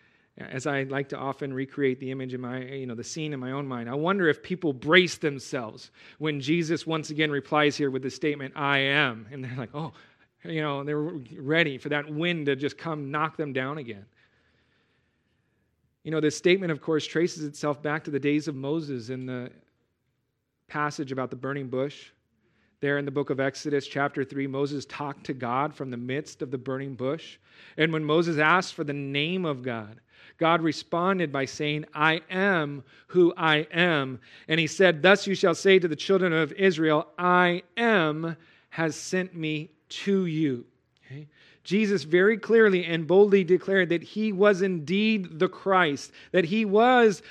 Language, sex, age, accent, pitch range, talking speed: English, male, 40-59, American, 145-210 Hz, 185 wpm